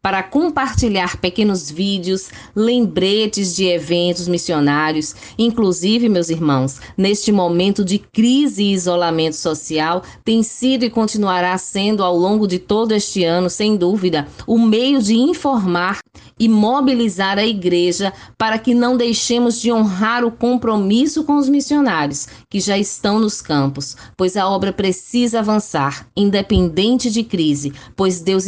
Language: Portuguese